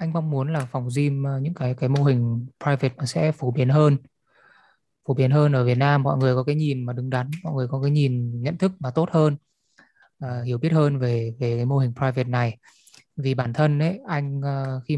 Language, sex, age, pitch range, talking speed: Vietnamese, male, 20-39, 125-150 Hz, 230 wpm